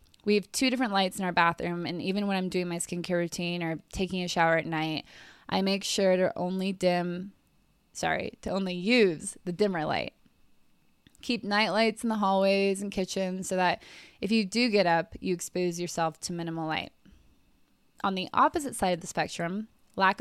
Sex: female